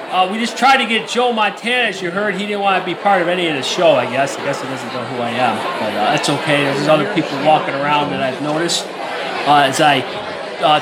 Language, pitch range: English, 170-235 Hz